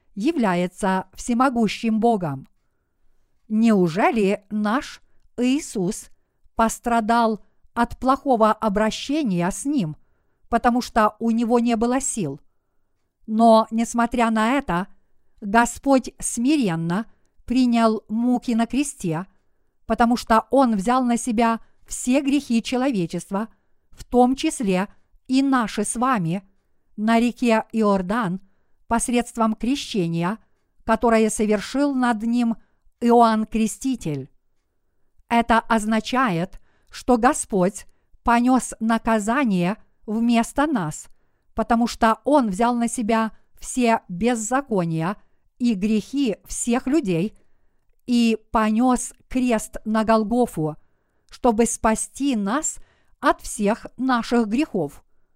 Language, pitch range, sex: Russian, 210-245 Hz, female